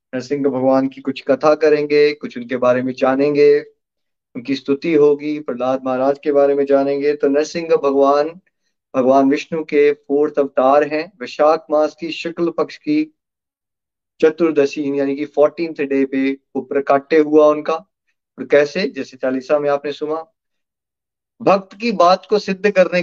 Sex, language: male, Hindi